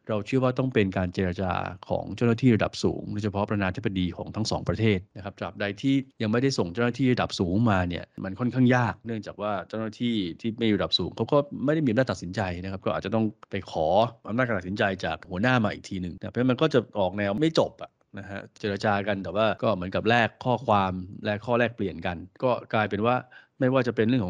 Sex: male